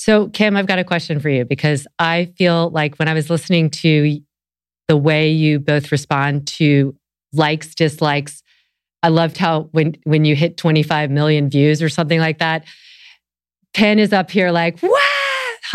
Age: 30-49